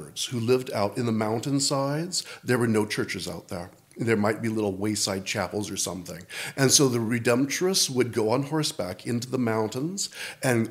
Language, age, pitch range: English, 40-59, 110-145 Hz